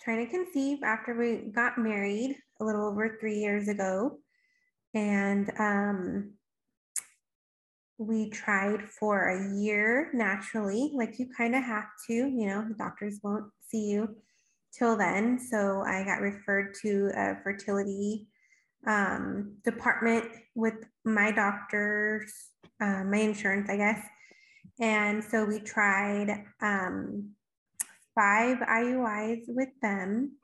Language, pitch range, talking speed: English, 205-230 Hz, 120 wpm